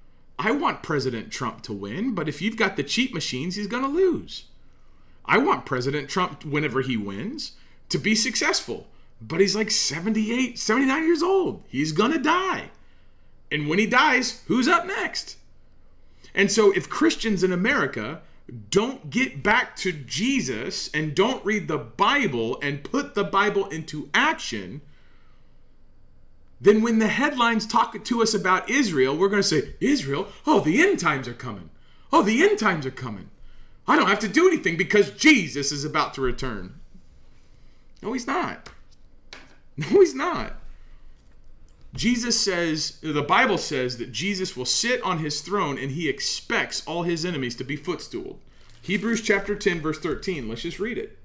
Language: English